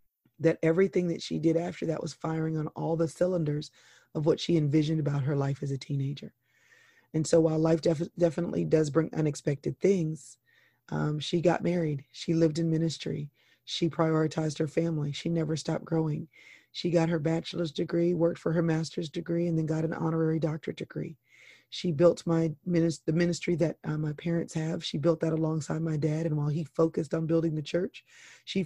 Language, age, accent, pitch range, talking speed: English, 30-49, American, 160-170 Hz, 190 wpm